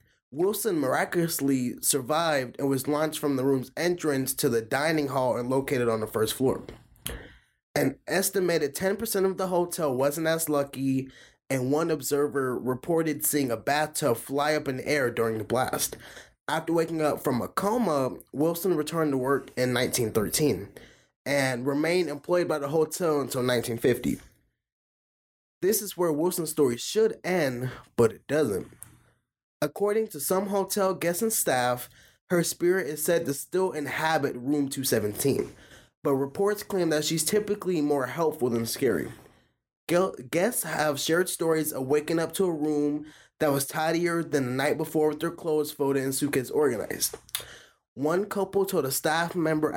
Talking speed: 155 wpm